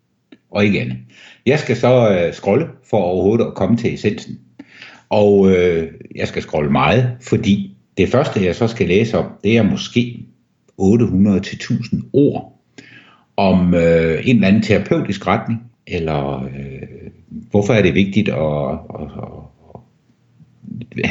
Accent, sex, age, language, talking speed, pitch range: native, male, 60-79, Danish, 135 wpm, 95-125 Hz